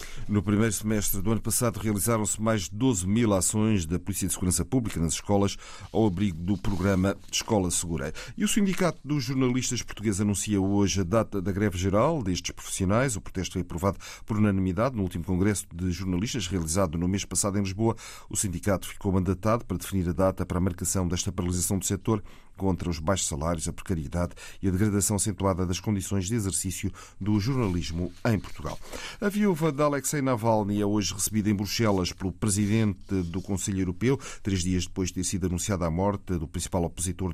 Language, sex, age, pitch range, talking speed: Portuguese, male, 40-59, 90-105 Hz, 190 wpm